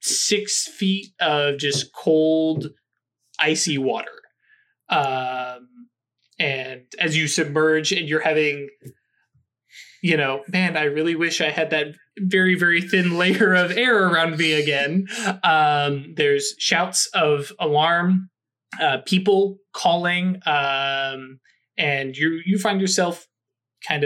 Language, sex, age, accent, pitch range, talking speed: English, male, 20-39, American, 140-185 Hz, 120 wpm